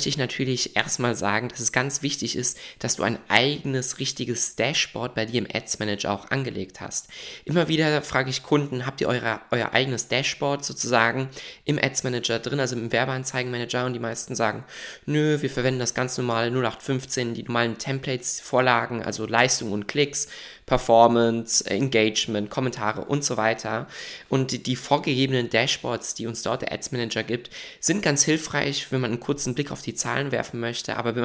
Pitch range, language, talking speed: 115-135 Hz, German, 180 wpm